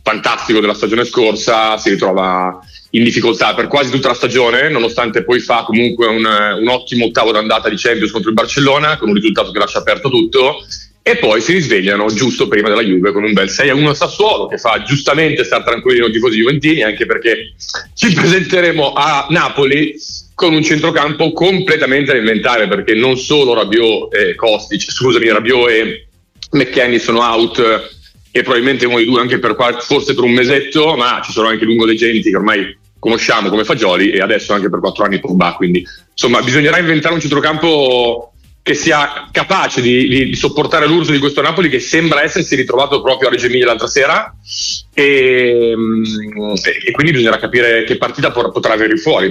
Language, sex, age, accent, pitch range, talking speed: Italian, male, 30-49, native, 110-160 Hz, 180 wpm